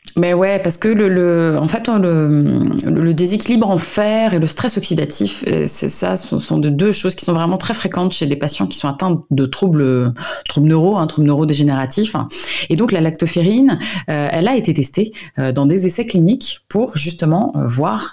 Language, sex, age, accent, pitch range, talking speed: French, female, 20-39, French, 145-190 Hz, 200 wpm